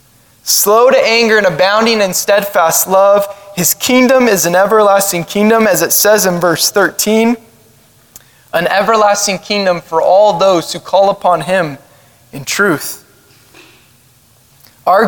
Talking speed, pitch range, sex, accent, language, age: 130 wpm, 160-230 Hz, male, American, English, 20-39